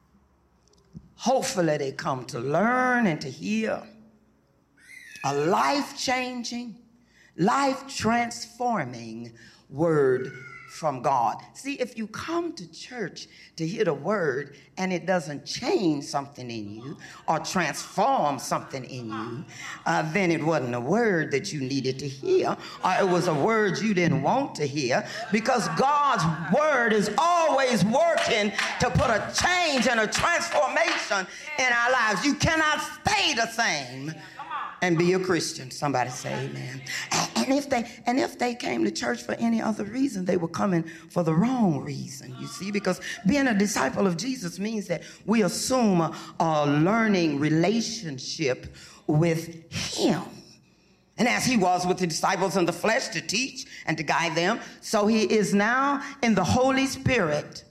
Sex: female